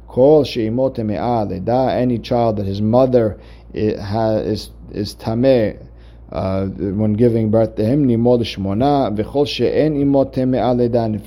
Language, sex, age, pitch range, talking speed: English, male, 50-69, 105-125 Hz, 90 wpm